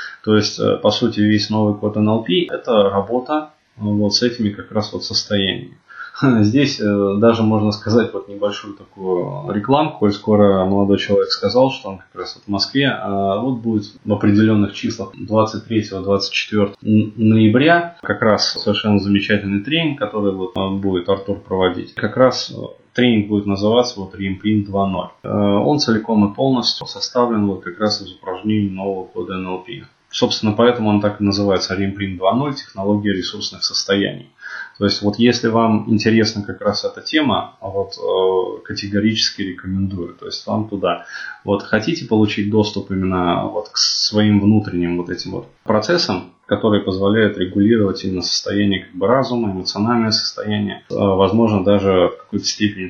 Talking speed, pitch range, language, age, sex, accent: 145 wpm, 100-110 Hz, Russian, 20-39, male, native